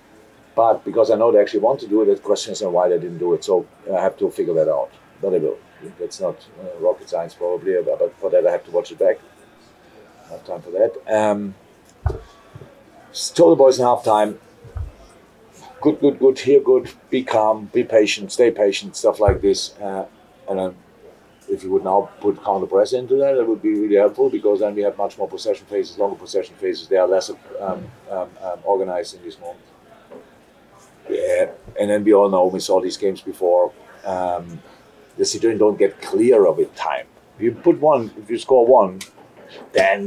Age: 50-69